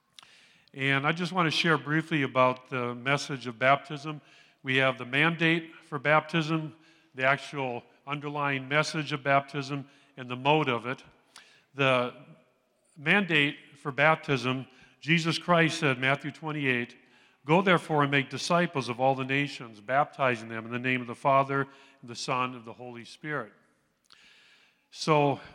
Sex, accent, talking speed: male, American, 150 wpm